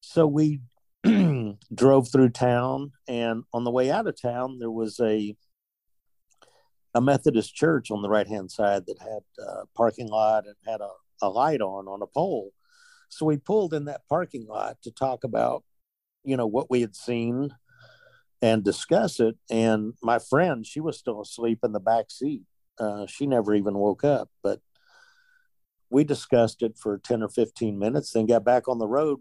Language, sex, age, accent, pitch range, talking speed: English, male, 50-69, American, 110-145 Hz, 180 wpm